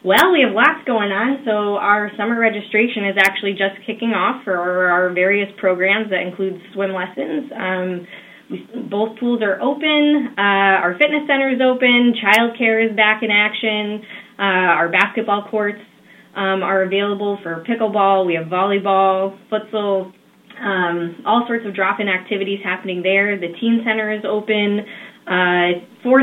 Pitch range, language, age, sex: 185-230 Hz, English, 10-29, female